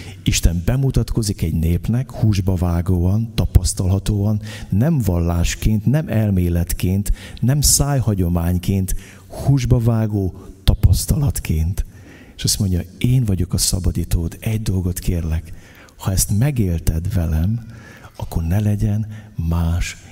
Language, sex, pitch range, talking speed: Hungarian, male, 90-110 Hz, 100 wpm